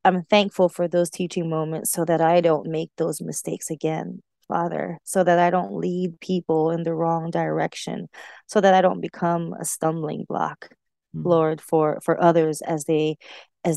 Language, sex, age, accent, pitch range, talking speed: English, female, 20-39, American, 160-185 Hz, 175 wpm